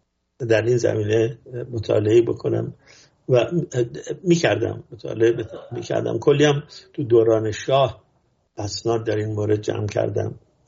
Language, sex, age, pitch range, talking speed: English, male, 50-69, 110-125 Hz, 120 wpm